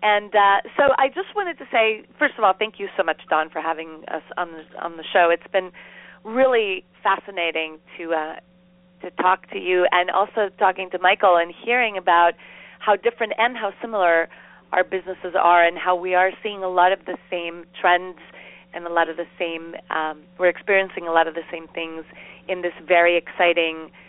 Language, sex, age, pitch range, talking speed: English, female, 30-49, 175-200 Hz, 200 wpm